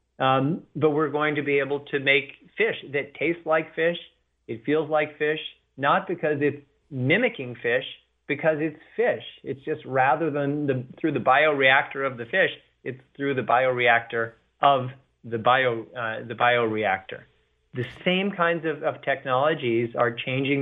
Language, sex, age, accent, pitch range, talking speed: English, male, 30-49, American, 125-150 Hz, 160 wpm